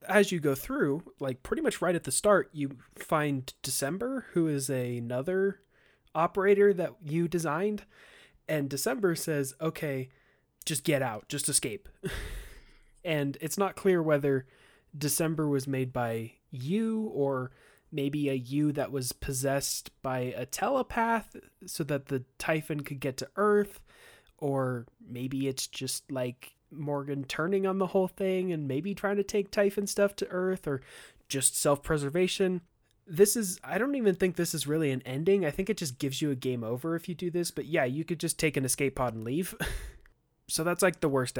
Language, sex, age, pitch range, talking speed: English, male, 20-39, 130-180 Hz, 175 wpm